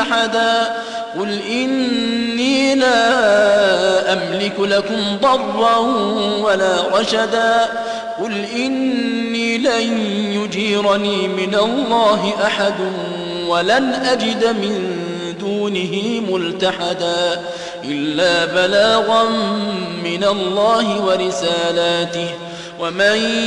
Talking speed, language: 65 wpm, Arabic